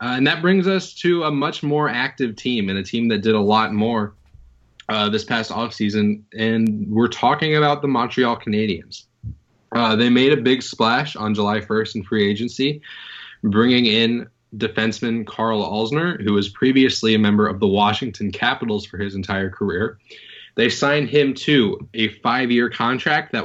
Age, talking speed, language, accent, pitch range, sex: 20-39, 170 wpm, English, American, 105-130 Hz, male